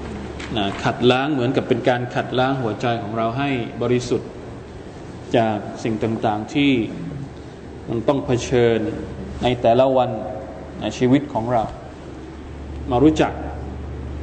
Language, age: Thai, 20-39